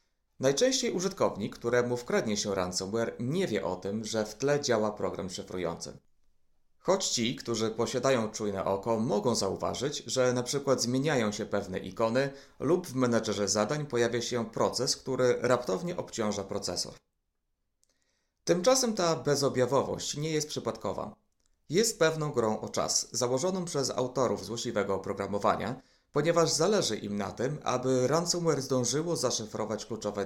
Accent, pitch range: native, 105-140 Hz